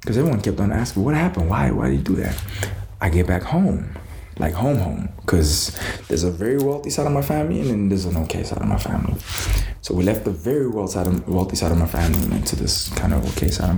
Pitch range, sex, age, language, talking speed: 85-105 Hz, male, 20-39, English, 235 wpm